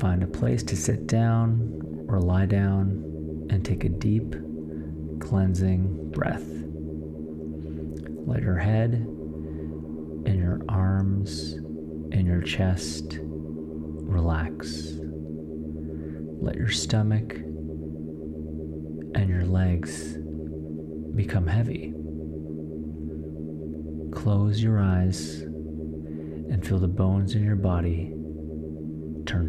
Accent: American